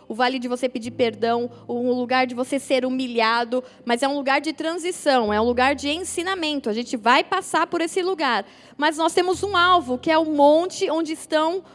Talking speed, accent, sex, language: 210 wpm, Brazilian, female, Portuguese